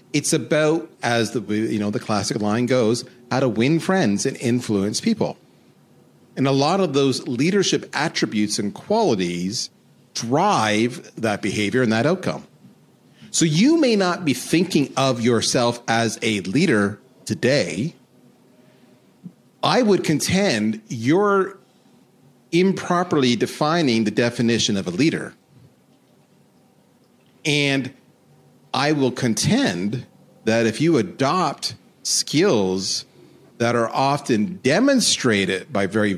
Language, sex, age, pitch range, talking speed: English, male, 40-59, 110-160 Hz, 115 wpm